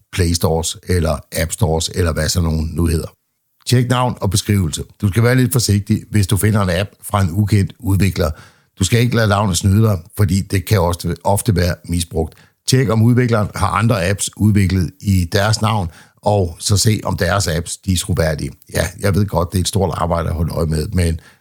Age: 60-79